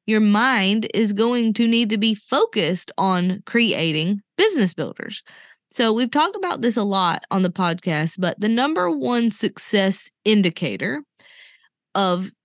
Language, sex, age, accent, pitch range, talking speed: English, female, 20-39, American, 190-245 Hz, 145 wpm